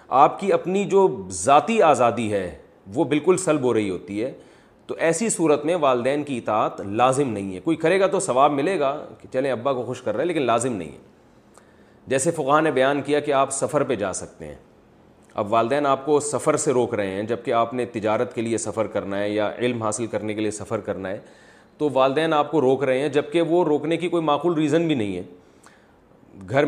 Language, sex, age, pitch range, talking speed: Urdu, male, 30-49, 105-135 Hz, 225 wpm